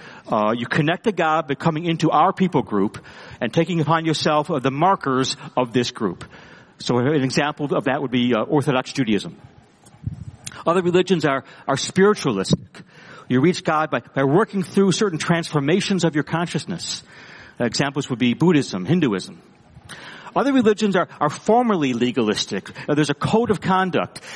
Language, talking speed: English, 160 wpm